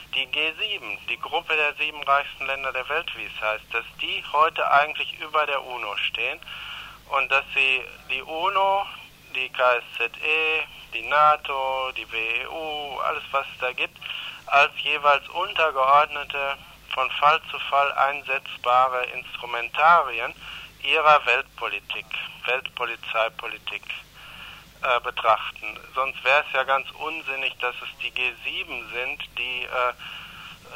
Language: German